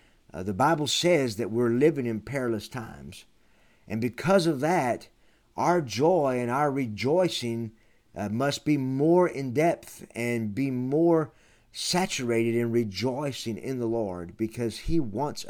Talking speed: 140 wpm